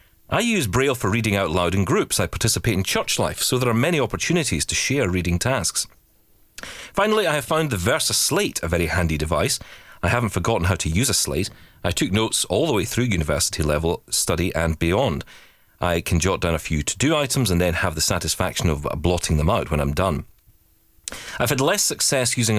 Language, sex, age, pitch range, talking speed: English, male, 40-59, 85-115 Hz, 205 wpm